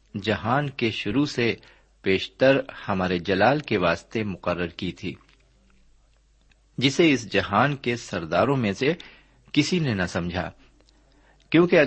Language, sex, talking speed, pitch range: Urdu, male, 120 wpm, 95-140 Hz